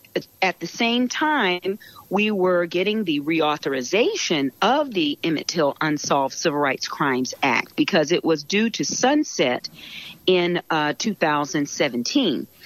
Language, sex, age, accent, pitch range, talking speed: English, female, 40-59, American, 155-215 Hz, 130 wpm